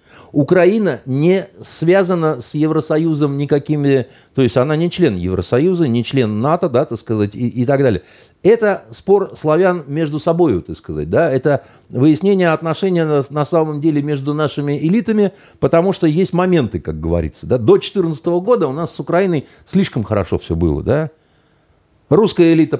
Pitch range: 110-165 Hz